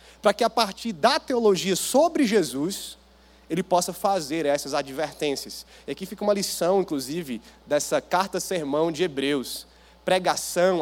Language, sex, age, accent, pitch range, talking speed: Portuguese, male, 20-39, Brazilian, 145-195 Hz, 135 wpm